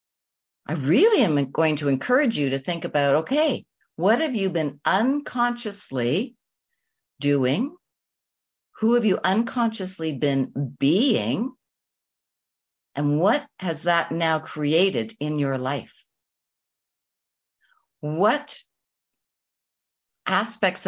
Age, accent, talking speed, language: 60-79, American, 100 wpm, English